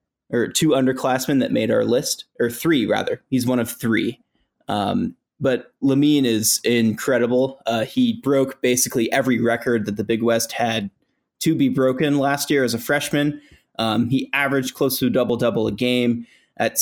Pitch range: 115-140 Hz